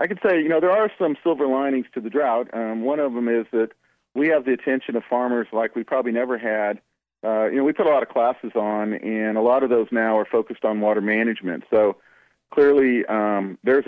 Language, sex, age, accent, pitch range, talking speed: English, male, 40-59, American, 110-125 Hz, 240 wpm